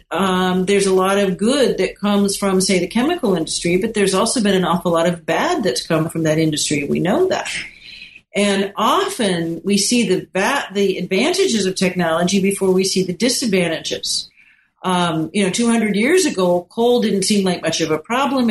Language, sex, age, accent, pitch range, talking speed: English, female, 50-69, American, 180-225 Hz, 190 wpm